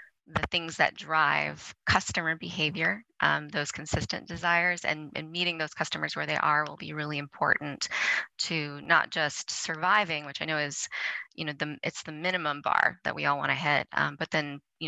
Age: 20-39